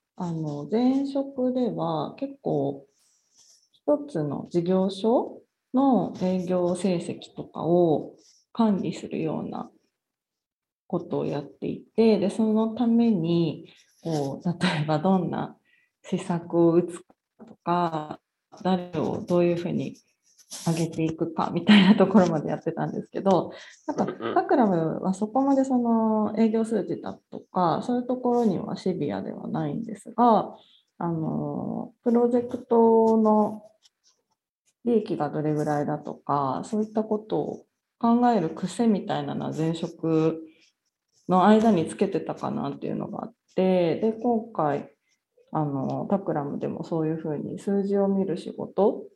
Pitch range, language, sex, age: 170-230 Hz, English, female, 30-49